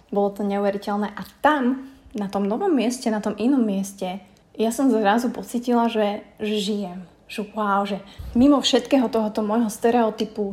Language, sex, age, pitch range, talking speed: Slovak, female, 20-39, 200-230 Hz, 155 wpm